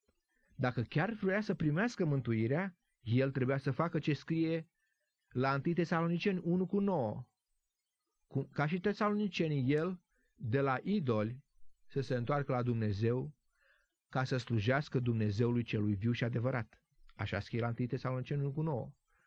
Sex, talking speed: male, 145 wpm